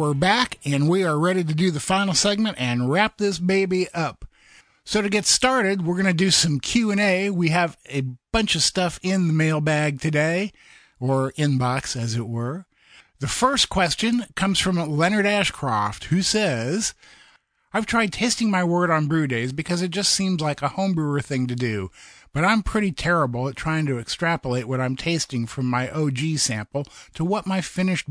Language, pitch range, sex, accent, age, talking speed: English, 130-185 Hz, male, American, 50-69, 185 wpm